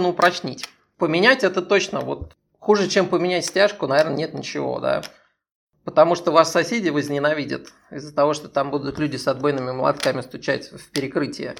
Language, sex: Russian, male